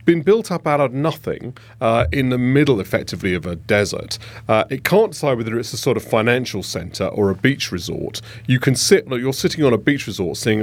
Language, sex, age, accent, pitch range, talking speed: English, male, 40-59, British, 100-130 Hz, 220 wpm